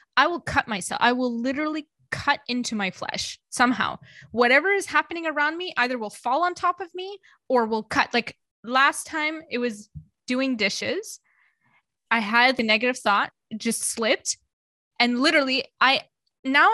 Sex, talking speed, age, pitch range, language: female, 160 wpm, 20-39, 210-275 Hz, English